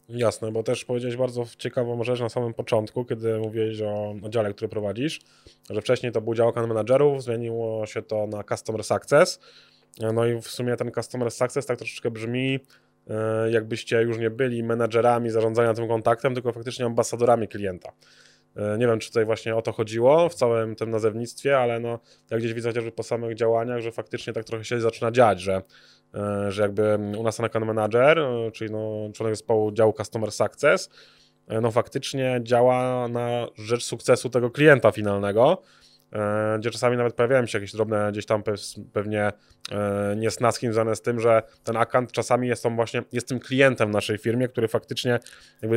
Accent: native